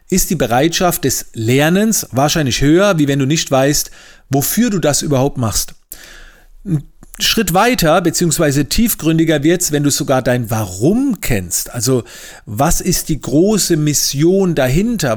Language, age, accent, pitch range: German, 40-59, German, 140-180 Hz